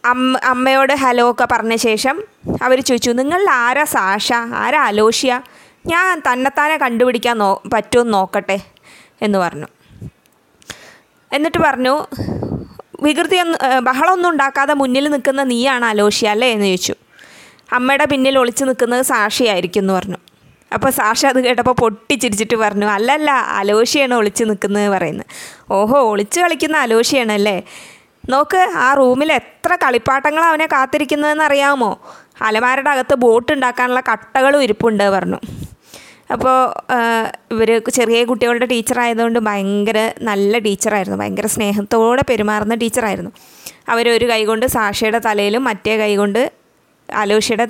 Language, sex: Malayalam, female